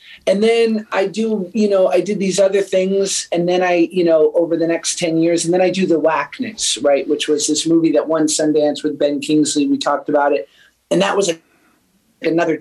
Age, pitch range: 30-49, 160-200 Hz